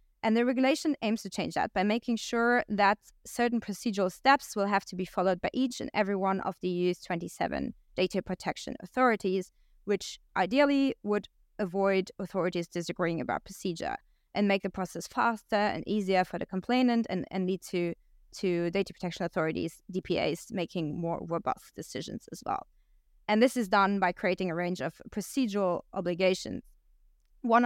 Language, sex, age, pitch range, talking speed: English, female, 20-39, 185-220 Hz, 165 wpm